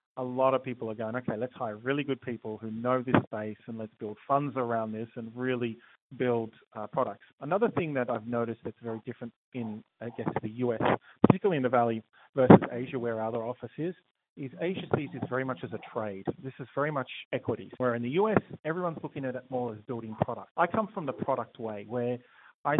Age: 30-49